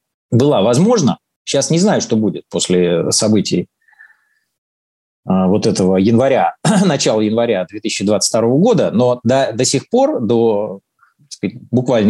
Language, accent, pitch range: Russian, native, 115-180 Hz